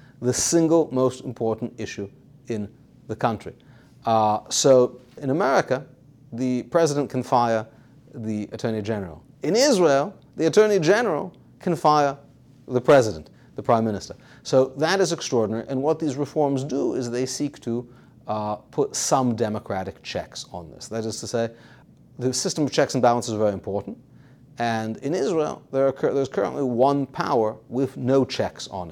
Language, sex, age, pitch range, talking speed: English, male, 30-49, 115-140 Hz, 155 wpm